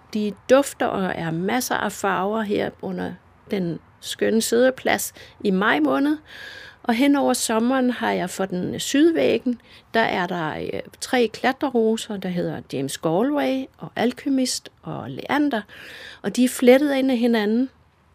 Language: Danish